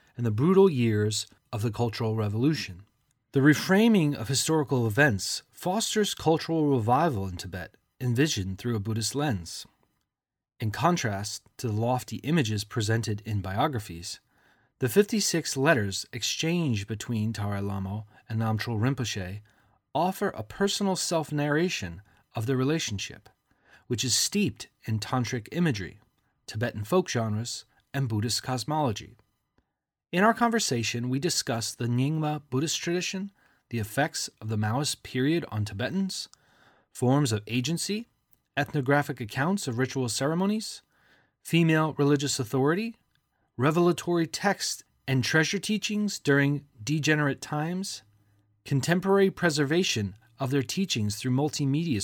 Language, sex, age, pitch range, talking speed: English, male, 30-49, 110-160 Hz, 120 wpm